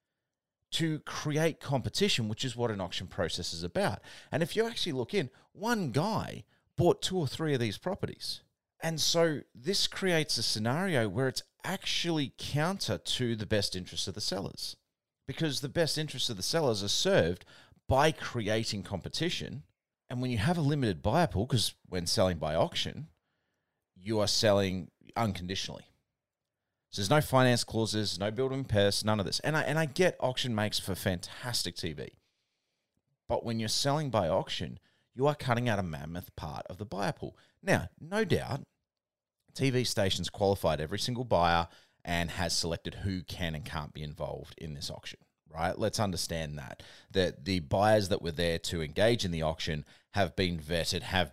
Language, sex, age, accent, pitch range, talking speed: English, male, 30-49, Australian, 90-130 Hz, 175 wpm